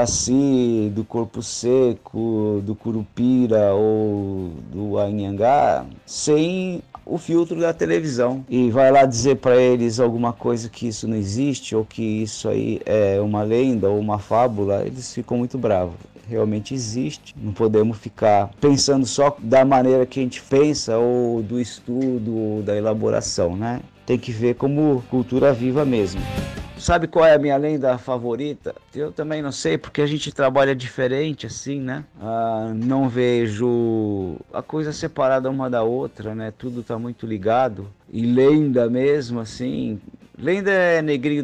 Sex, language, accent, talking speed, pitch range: male, Portuguese, Brazilian, 155 wpm, 110-140 Hz